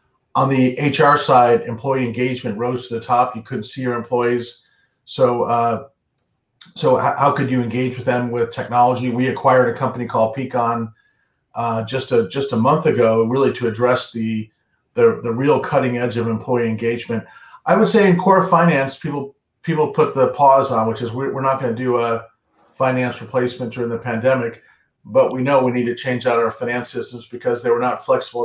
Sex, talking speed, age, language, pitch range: male, 195 wpm, 40-59, English, 120-135 Hz